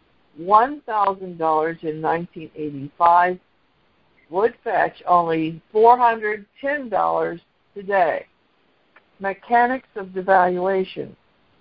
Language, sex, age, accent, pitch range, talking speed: English, female, 60-79, American, 175-220 Hz, 50 wpm